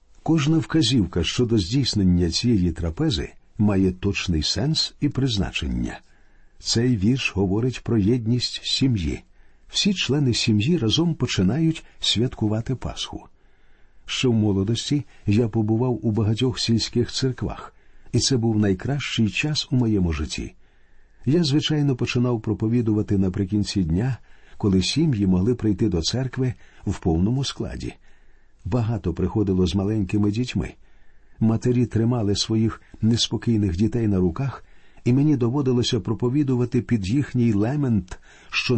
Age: 50-69